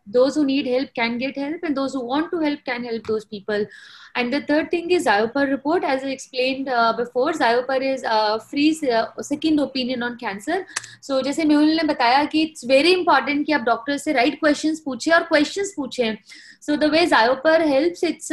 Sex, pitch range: female, 255-310 Hz